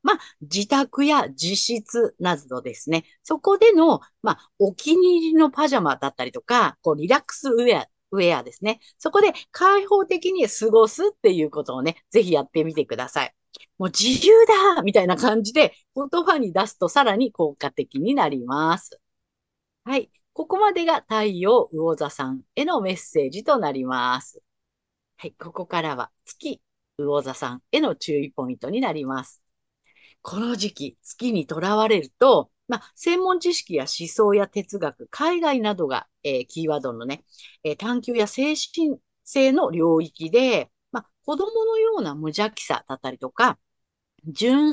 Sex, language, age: female, Japanese, 50-69